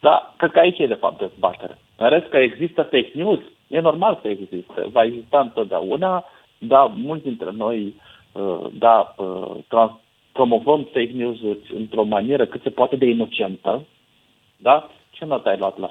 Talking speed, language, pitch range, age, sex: 175 wpm, Romanian, 110-150 Hz, 40-59, male